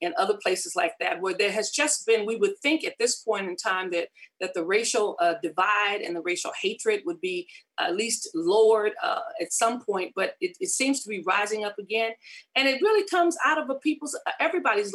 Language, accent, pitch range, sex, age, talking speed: English, American, 205-330 Hz, female, 40-59, 220 wpm